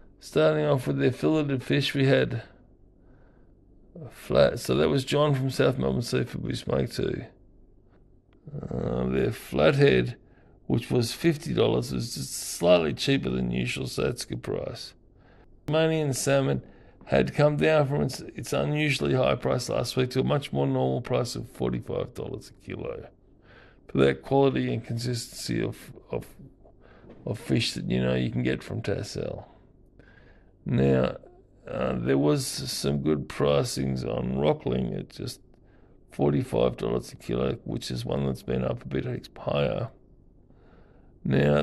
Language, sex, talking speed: English, male, 145 wpm